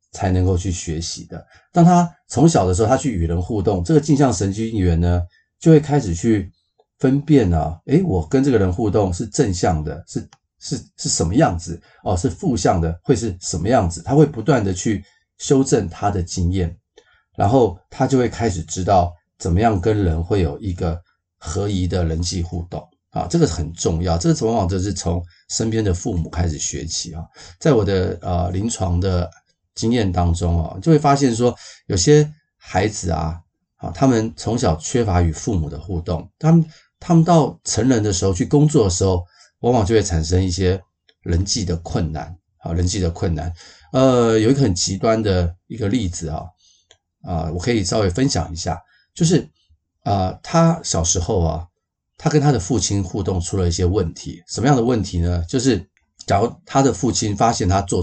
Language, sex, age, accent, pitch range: Chinese, male, 30-49, native, 85-120 Hz